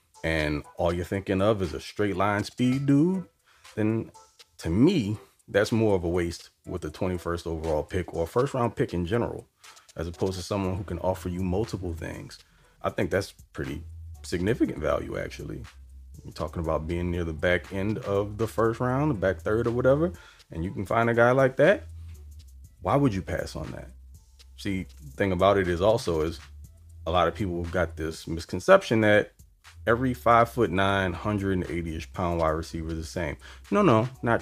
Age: 30-49